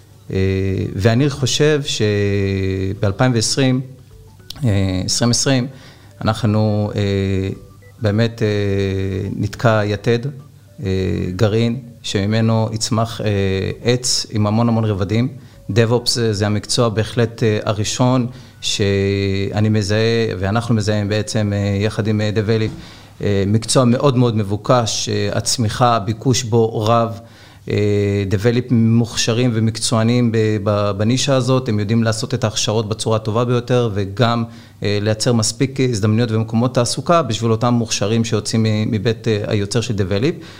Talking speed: 95 wpm